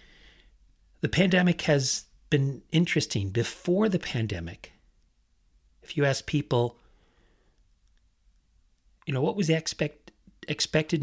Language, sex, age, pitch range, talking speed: English, male, 40-59, 90-145 Hz, 100 wpm